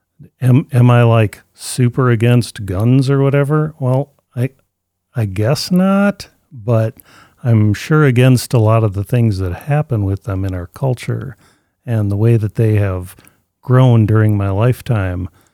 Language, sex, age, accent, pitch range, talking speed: English, male, 40-59, American, 105-130 Hz, 155 wpm